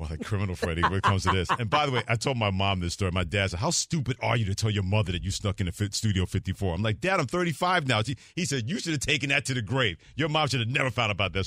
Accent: American